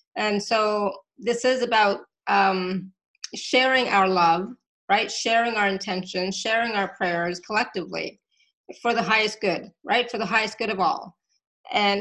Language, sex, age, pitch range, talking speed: English, female, 30-49, 200-235 Hz, 145 wpm